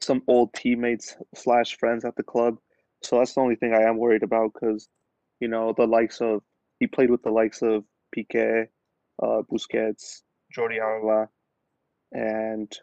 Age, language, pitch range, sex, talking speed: 20-39, English, 110-115 Hz, male, 165 wpm